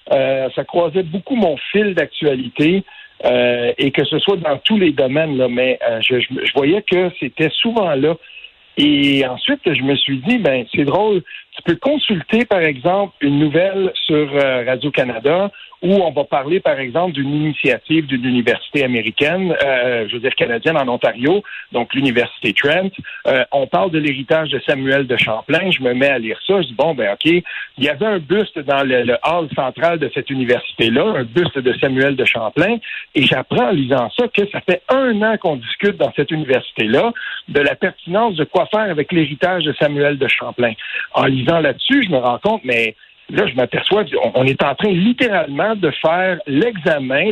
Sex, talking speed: male, 195 wpm